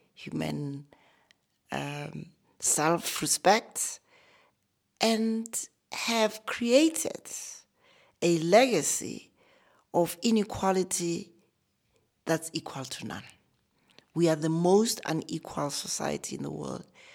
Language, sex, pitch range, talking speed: English, female, 160-225 Hz, 80 wpm